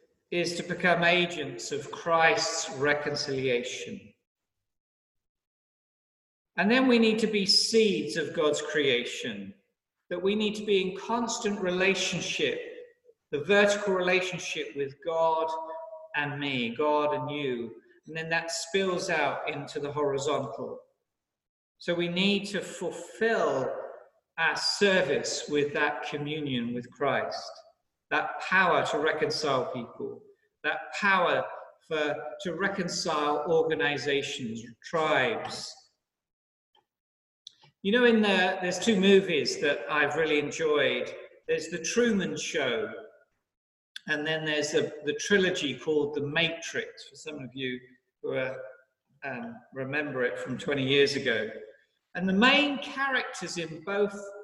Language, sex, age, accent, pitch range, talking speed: English, male, 50-69, British, 150-235 Hz, 120 wpm